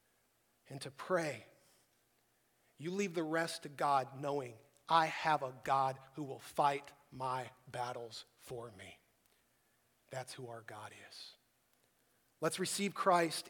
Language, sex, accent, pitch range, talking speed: English, male, American, 135-180 Hz, 130 wpm